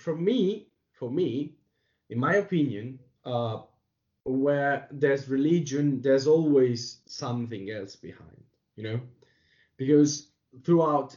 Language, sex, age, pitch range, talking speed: Italian, male, 20-39, 120-150 Hz, 105 wpm